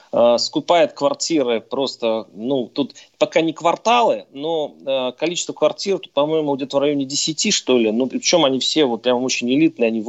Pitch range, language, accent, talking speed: 120-190 Hz, Russian, native, 170 wpm